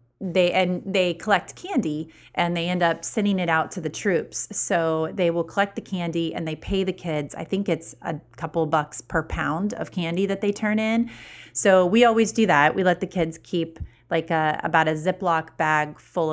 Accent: American